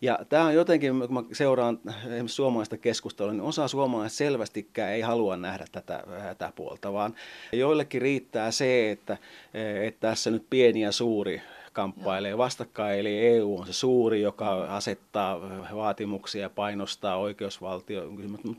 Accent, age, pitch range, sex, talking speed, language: native, 30-49, 105-125 Hz, male, 135 wpm, Finnish